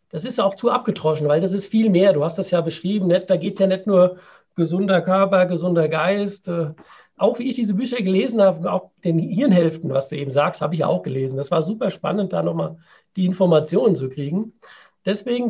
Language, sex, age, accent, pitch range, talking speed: German, male, 50-69, German, 180-225 Hz, 210 wpm